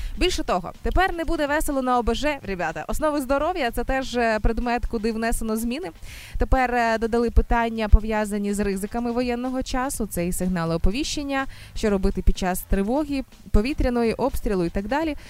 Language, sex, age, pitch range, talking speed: Ukrainian, female, 20-39, 210-255 Hz, 155 wpm